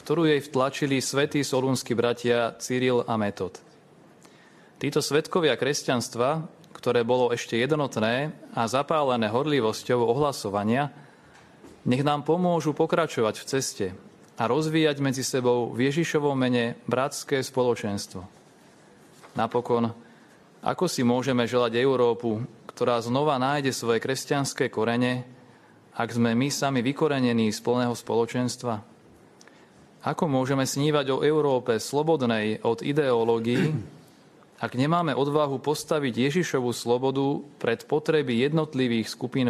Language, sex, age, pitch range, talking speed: Slovak, male, 30-49, 120-150 Hz, 110 wpm